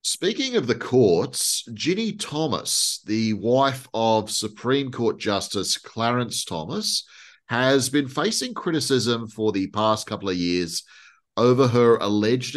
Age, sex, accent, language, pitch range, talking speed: 30-49, male, Australian, English, 100-130 Hz, 130 wpm